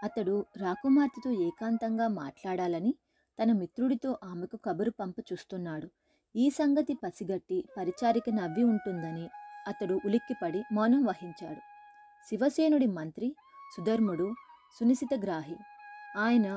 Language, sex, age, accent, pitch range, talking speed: Telugu, female, 20-39, native, 195-270 Hz, 90 wpm